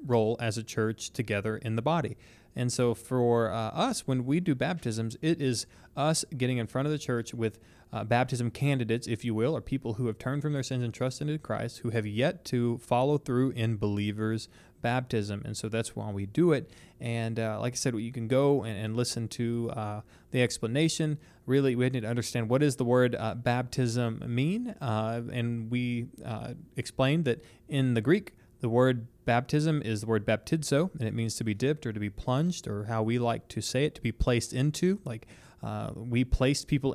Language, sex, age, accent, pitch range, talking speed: English, male, 20-39, American, 115-140 Hz, 210 wpm